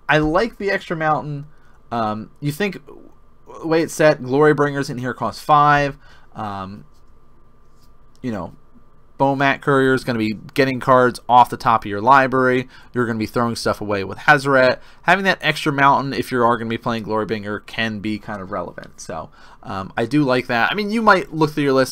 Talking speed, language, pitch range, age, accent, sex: 210 wpm, English, 110-145 Hz, 20-39, American, male